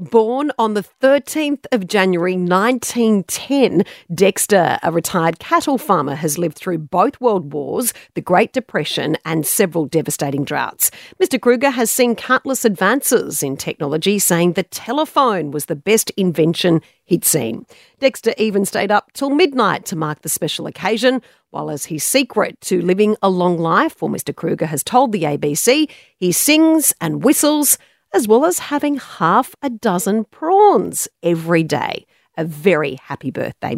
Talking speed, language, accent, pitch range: 155 wpm, English, Australian, 165-245 Hz